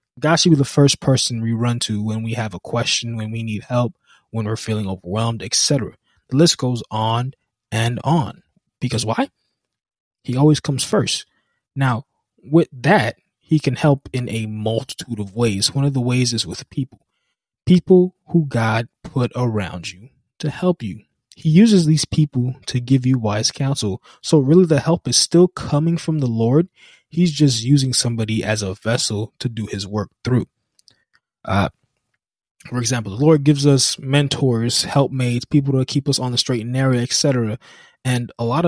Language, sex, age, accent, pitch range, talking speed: English, male, 20-39, American, 115-145 Hz, 180 wpm